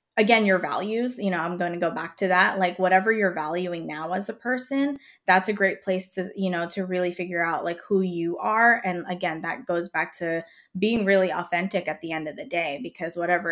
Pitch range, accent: 175-220 Hz, American